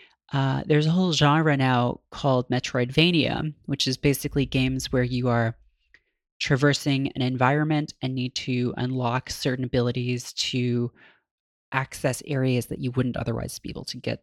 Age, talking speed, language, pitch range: 30-49, 150 wpm, English, 125-150 Hz